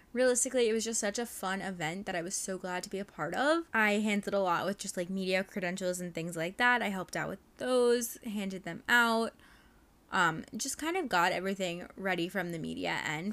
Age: 10-29